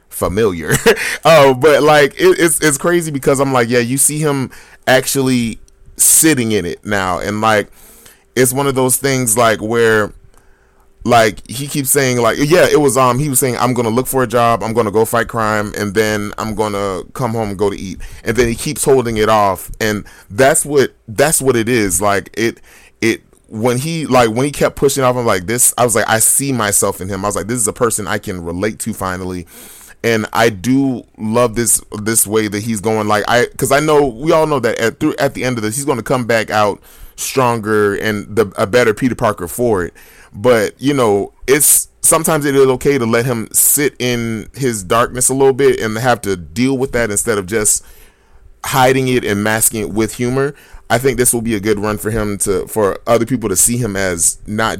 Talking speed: 225 wpm